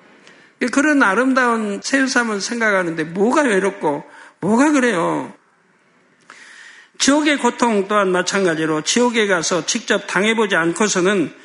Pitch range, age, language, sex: 190-245 Hz, 60-79, Korean, male